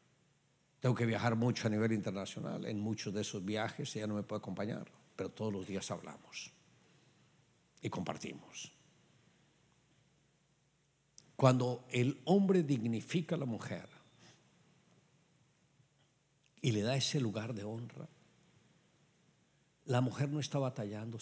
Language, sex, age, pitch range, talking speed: English, male, 60-79, 115-160 Hz, 120 wpm